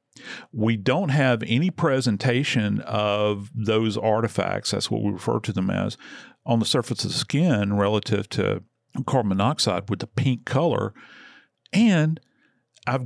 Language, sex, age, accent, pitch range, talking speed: English, male, 50-69, American, 105-145 Hz, 140 wpm